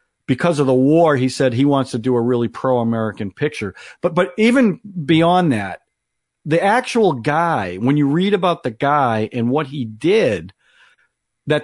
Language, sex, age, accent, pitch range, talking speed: English, male, 50-69, American, 130-165 Hz, 170 wpm